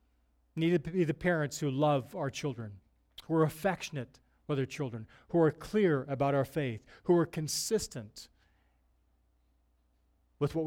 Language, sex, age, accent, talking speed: English, male, 40-59, American, 145 wpm